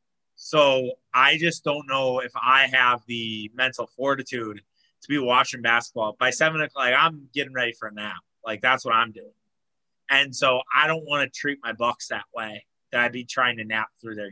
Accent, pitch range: American, 120-145 Hz